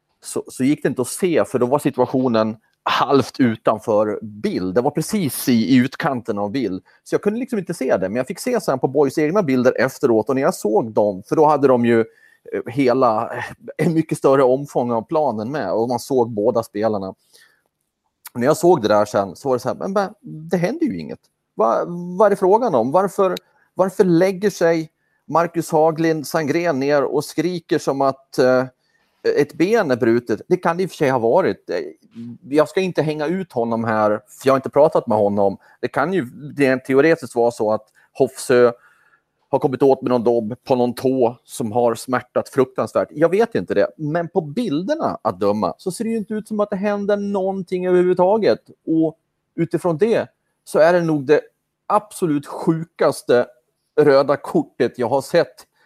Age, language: 30-49, Swedish